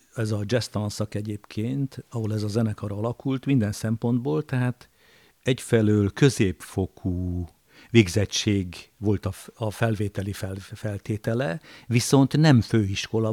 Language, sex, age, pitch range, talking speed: Hungarian, male, 60-79, 105-130 Hz, 100 wpm